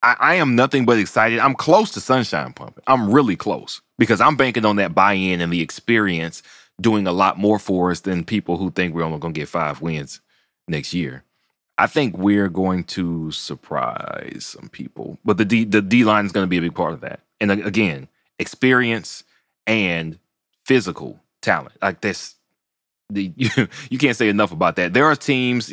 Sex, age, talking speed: male, 30-49, 195 wpm